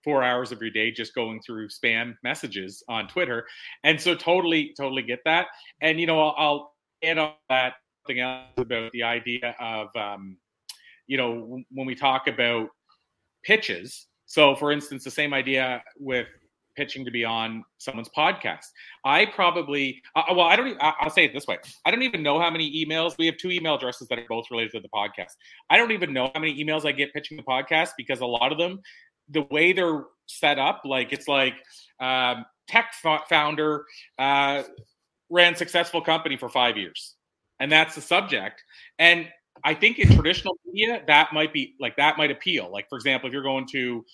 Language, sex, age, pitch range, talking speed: English, male, 30-49, 125-160 Hz, 195 wpm